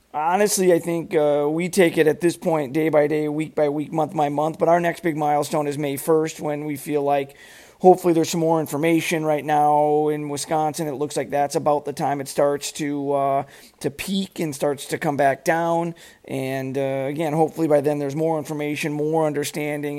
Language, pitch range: English, 150-170 Hz